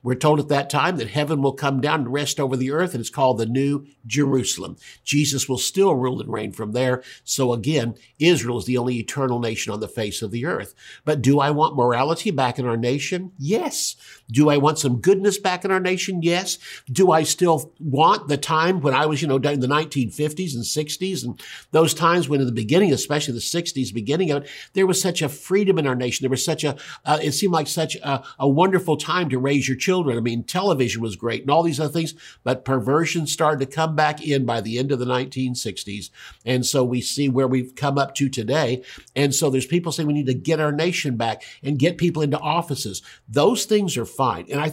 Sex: male